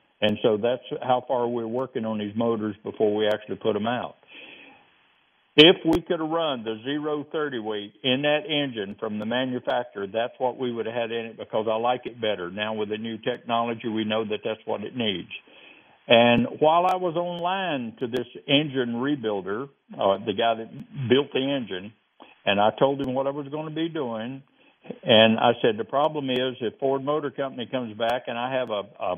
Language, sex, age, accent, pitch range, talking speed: English, male, 60-79, American, 110-140 Hz, 205 wpm